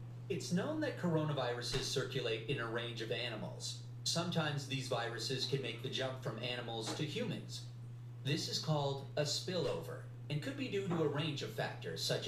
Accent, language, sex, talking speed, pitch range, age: American, English, male, 175 wpm, 120-150 Hz, 40-59